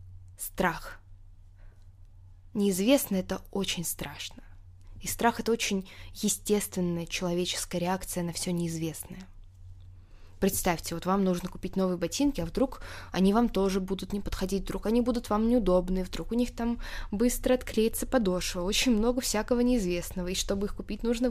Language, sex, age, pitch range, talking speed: Russian, female, 20-39, 165-205 Hz, 145 wpm